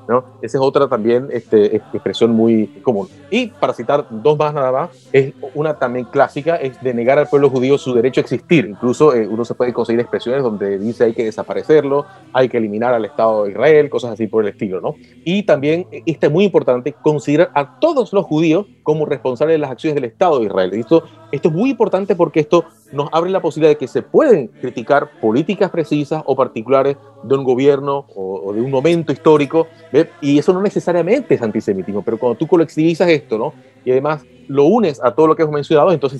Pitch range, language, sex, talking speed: 125-160 Hz, Spanish, male, 210 wpm